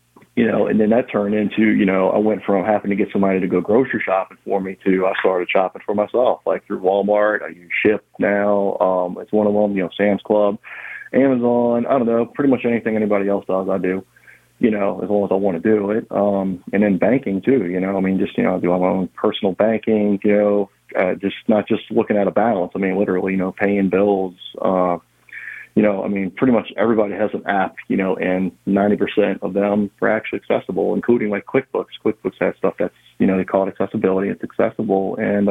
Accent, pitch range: American, 95-105 Hz